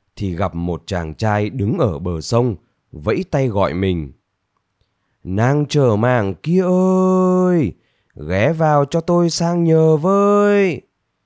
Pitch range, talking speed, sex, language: 95-150 Hz, 135 wpm, male, Vietnamese